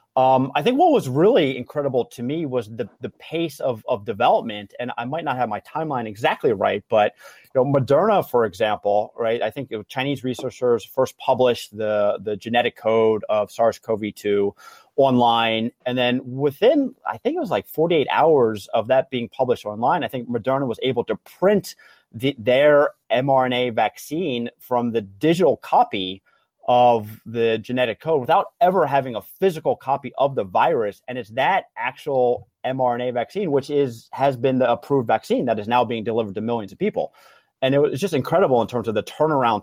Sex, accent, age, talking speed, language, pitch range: male, American, 30-49, 180 wpm, English, 110-135 Hz